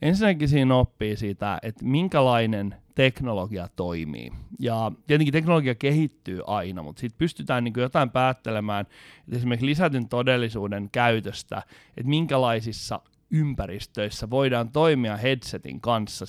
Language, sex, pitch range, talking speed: Finnish, male, 105-135 Hz, 105 wpm